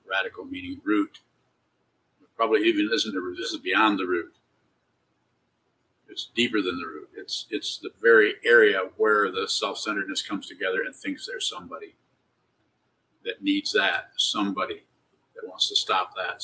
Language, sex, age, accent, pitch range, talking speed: English, male, 50-69, American, 290-445 Hz, 145 wpm